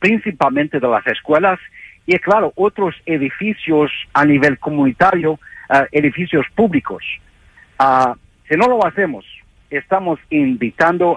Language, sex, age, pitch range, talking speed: English, male, 50-69, 135-175 Hz, 100 wpm